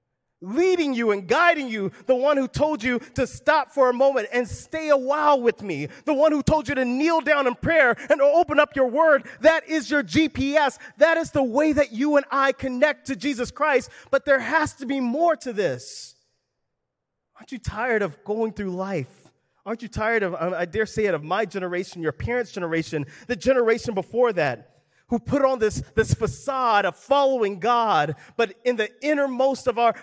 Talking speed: 200 wpm